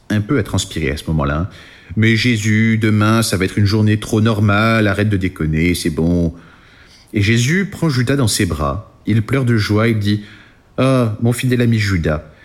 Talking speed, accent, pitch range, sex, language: 210 wpm, French, 95-125 Hz, male, French